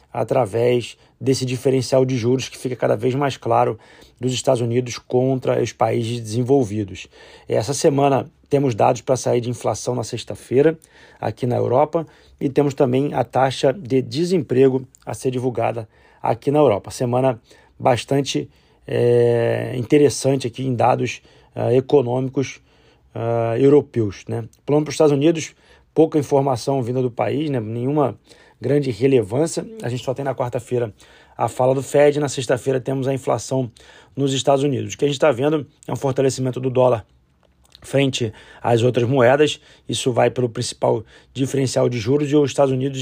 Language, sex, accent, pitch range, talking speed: Portuguese, male, Brazilian, 120-140 Hz, 160 wpm